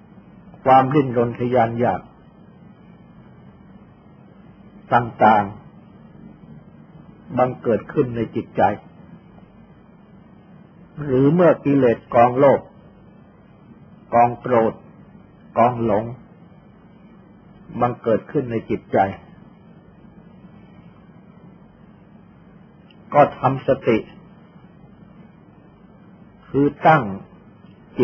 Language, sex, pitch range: Thai, male, 125-190 Hz